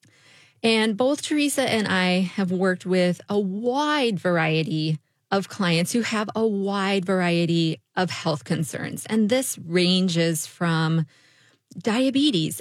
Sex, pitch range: female, 160-205 Hz